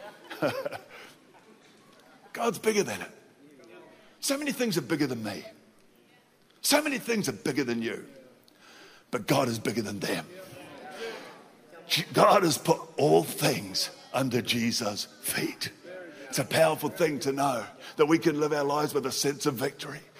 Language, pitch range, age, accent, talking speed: Russian, 150-180 Hz, 50-69, British, 145 wpm